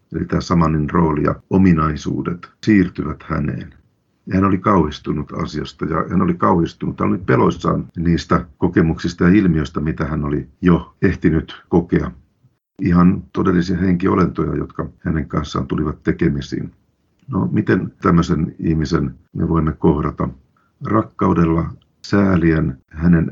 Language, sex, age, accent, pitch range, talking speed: Finnish, male, 50-69, native, 80-90 Hz, 120 wpm